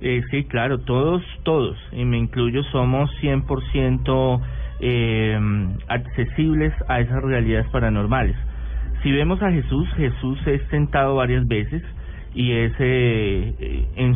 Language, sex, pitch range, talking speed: English, male, 110-140 Hz, 120 wpm